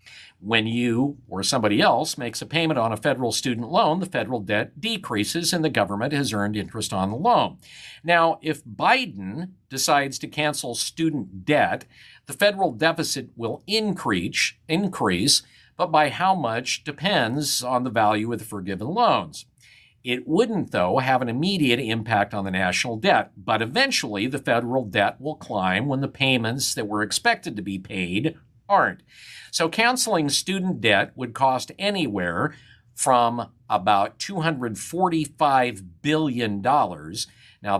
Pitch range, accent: 105-155 Hz, American